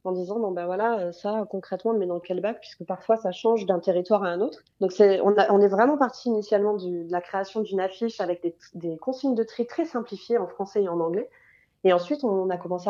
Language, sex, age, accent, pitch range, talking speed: French, female, 30-49, French, 175-205 Hz, 255 wpm